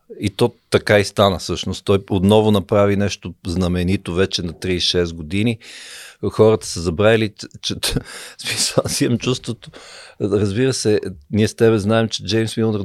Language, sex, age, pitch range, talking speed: Bulgarian, male, 50-69, 95-125 Hz, 150 wpm